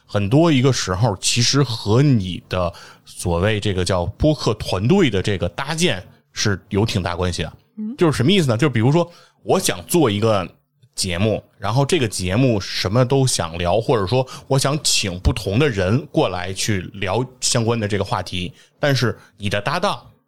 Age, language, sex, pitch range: 20-39, Chinese, male, 100-135 Hz